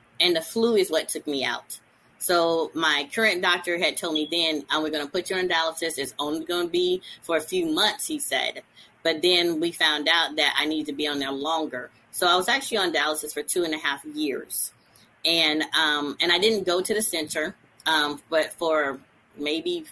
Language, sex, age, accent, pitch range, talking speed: English, female, 30-49, American, 150-190 Hz, 220 wpm